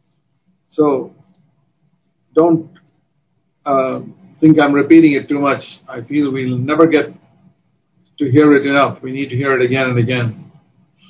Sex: male